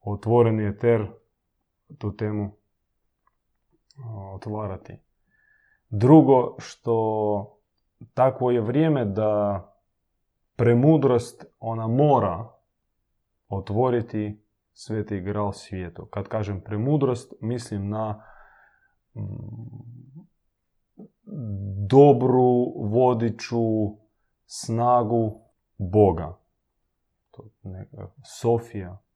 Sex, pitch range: male, 100-120 Hz